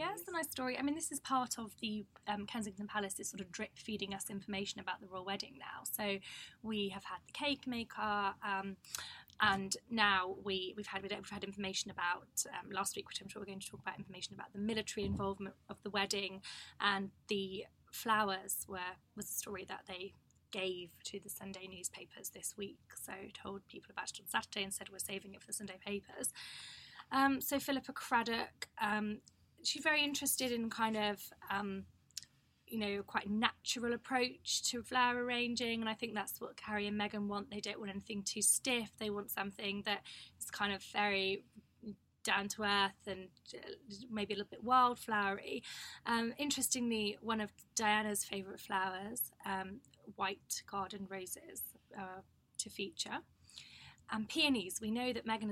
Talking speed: 180 wpm